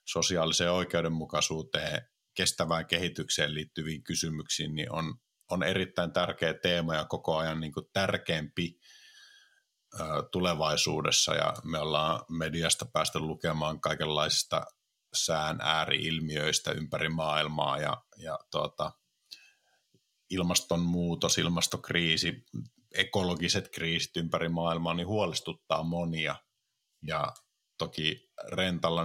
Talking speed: 95 wpm